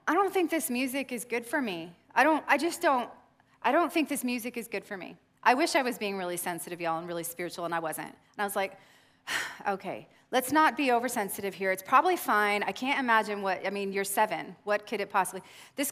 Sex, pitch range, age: female, 205-285 Hz, 30-49